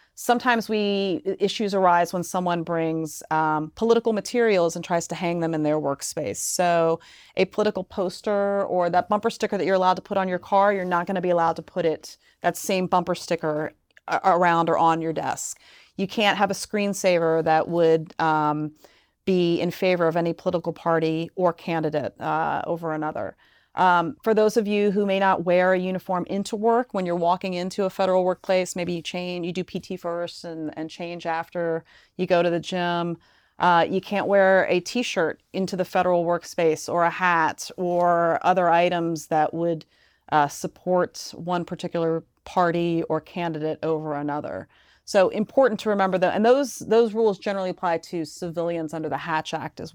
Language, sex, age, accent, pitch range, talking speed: English, female, 30-49, American, 165-190 Hz, 185 wpm